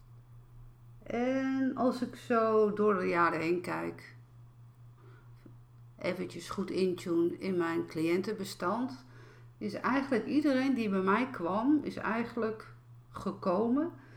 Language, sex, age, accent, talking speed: Dutch, female, 50-69, Dutch, 105 wpm